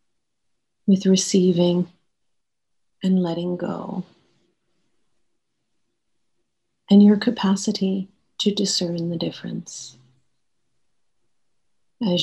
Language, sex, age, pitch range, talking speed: English, female, 40-59, 175-210 Hz, 65 wpm